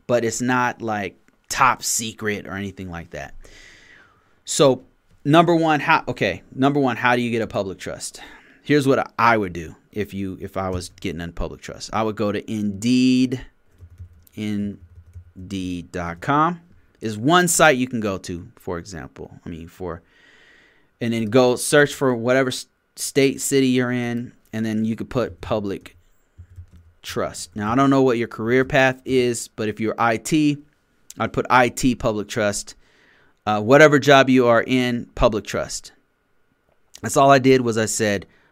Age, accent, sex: 30-49, American, male